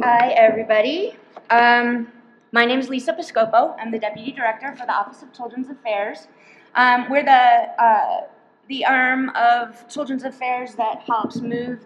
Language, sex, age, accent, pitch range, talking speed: English, female, 30-49, American, 225-265 Hz, 145 wpm